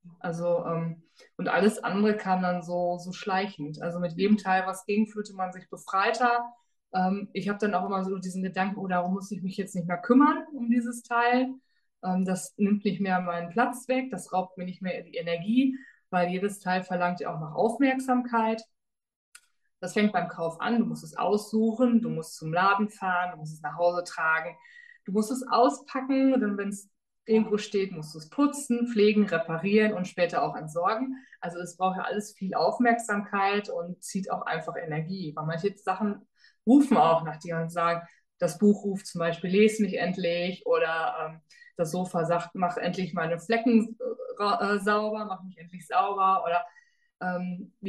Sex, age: female, 20-39